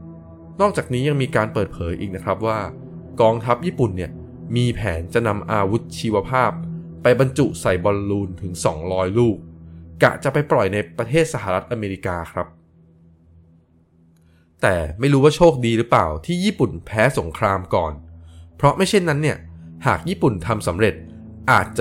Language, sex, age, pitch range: Thai, male, 20-39, 85-125 Hz